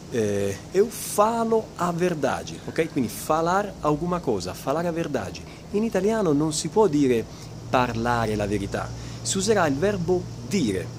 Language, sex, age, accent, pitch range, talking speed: Italian, male, 30-49, native, 115-190 Hz, 145 wpm